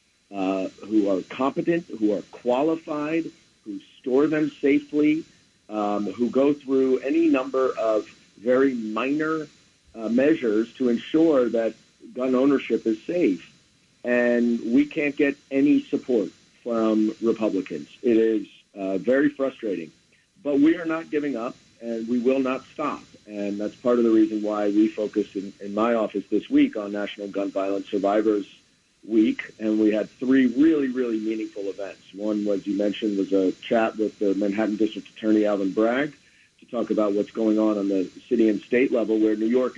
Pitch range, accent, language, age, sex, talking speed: 100-130 Hz, American, English, 50-69, male, 165 wpm